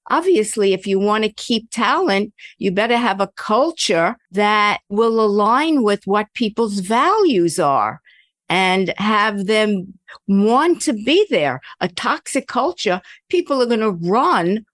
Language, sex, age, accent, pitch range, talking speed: English, female, 50-69, American, 185-235 Hz, 145 wpm